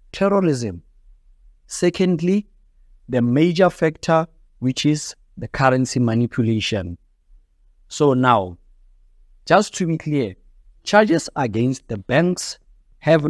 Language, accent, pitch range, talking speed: English, South African, 110-160 Hz, 95 wpm